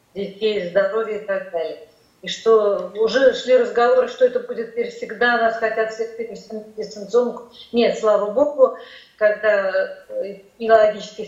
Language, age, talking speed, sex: Russian, 40-59, 120 wpm, female